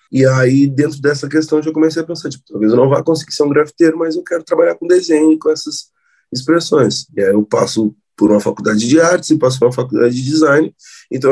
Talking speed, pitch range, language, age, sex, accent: 245 wpm, 125-160 Hz, Portuguese, 20-39, male, Brazilian